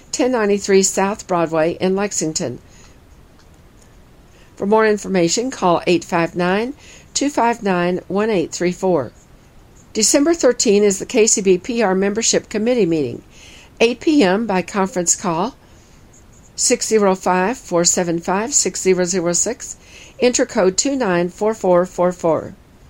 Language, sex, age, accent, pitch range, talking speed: English, female, 50-69, American, 180-230 Hz, 70 wpm